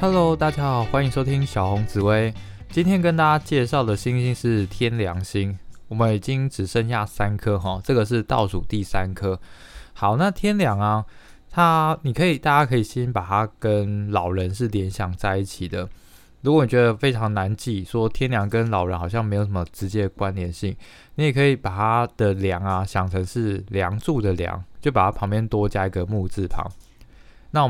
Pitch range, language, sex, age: 95-120 Hz, Chinese, male, 20-39